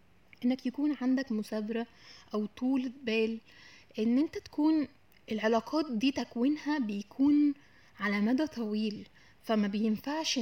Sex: female